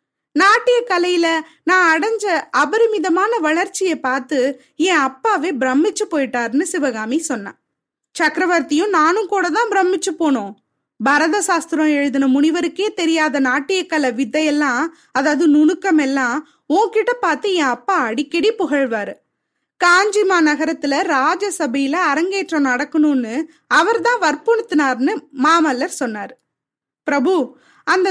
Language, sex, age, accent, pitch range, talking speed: Tamil, female, 20-39, native, 285-380 Hz, 85 wpm